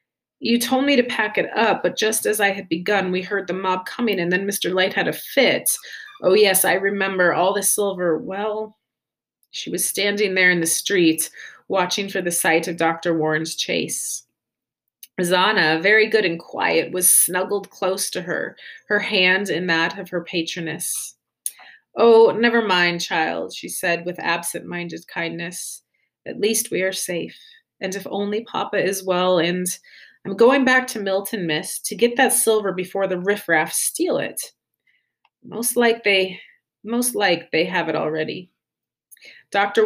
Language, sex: English, female